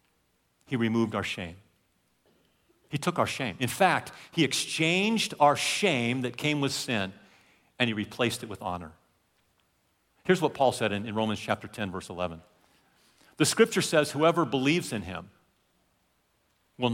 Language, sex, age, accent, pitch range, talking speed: English, male, 50-69, American, 115-160 Hz, 150 wpm